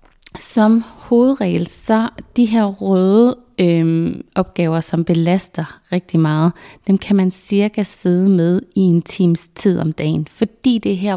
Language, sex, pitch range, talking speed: Danish, female, 165-200 Hz, 150 wpm